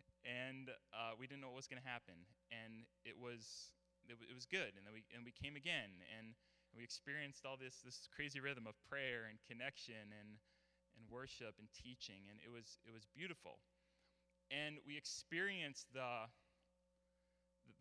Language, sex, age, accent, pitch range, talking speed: English, male, 20-39, American, 110-145 Hz, 175 wpm